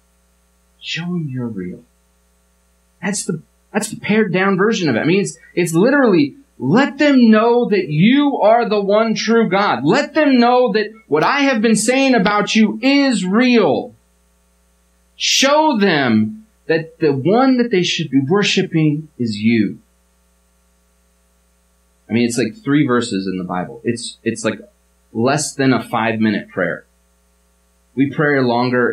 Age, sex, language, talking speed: 30-49, male, English, 155 wpm